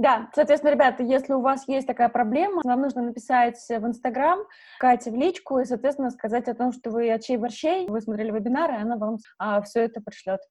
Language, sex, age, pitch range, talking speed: Russian, female, 20-39, 225-280 Hz, 205 wpm